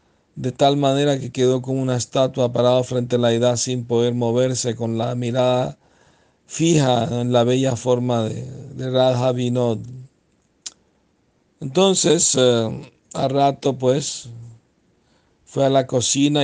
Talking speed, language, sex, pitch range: 135 wpm, Spanish, male, 125-140 Hz